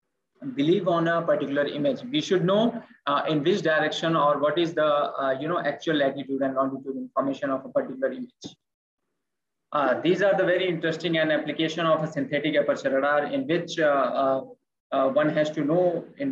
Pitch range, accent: 145-175 Hz, Indian